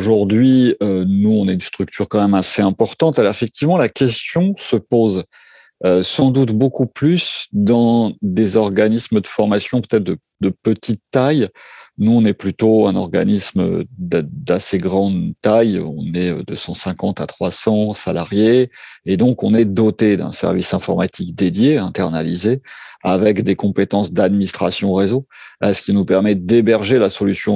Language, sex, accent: French, male, French